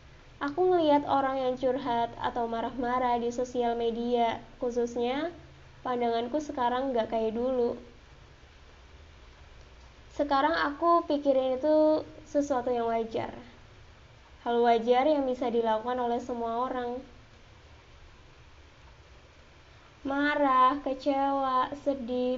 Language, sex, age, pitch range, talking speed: Indonesian, female, 20-39, 235-280 Hz, 90 wpm